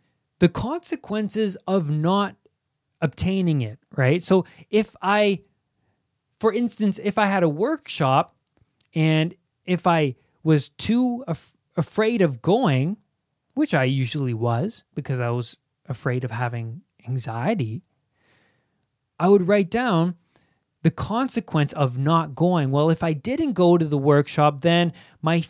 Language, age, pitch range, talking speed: English, 20-39, 135-170 Hz, 130 wpm